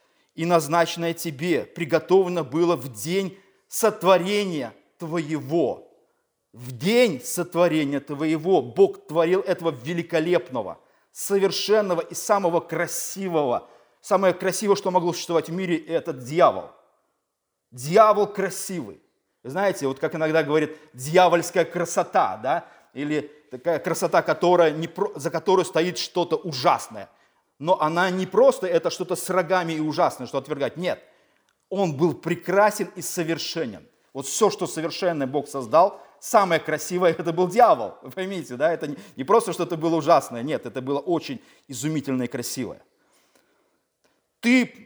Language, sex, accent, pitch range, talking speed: Russian, male, native, 155-195 Hz, 125 wpm